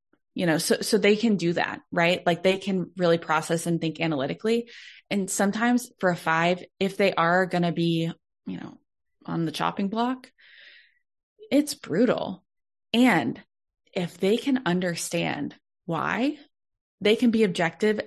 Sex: female